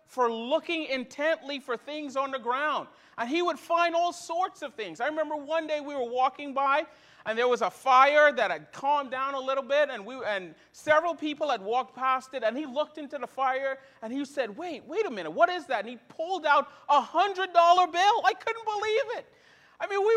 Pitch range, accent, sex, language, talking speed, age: 265-335 Hz, American, male, English, 225 wpm, 40-59